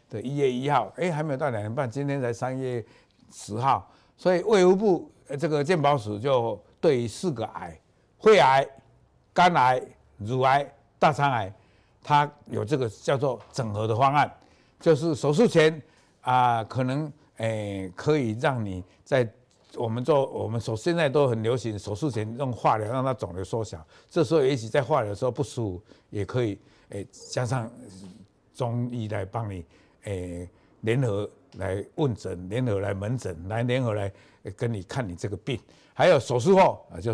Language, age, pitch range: Chinese, 60-79, 105-135 Hz